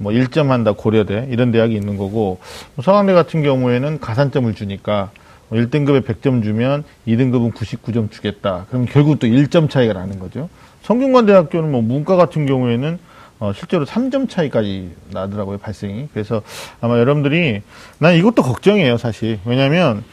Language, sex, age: Korean, male, 40-59